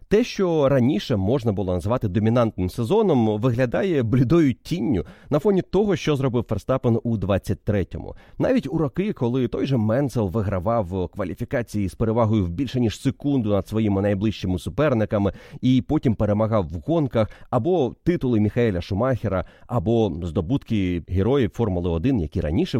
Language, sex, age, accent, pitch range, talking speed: Ukrainian, male, 30-49, native, 95-130 Hz, 140 wpm